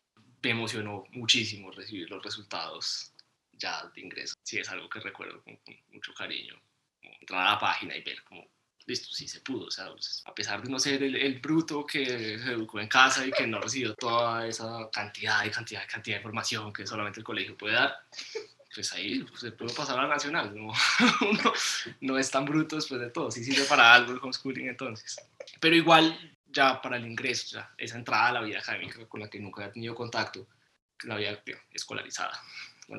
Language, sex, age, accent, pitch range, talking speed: Spanish, male, 20-39, Colombian, 110-135 Hz, 210 wpm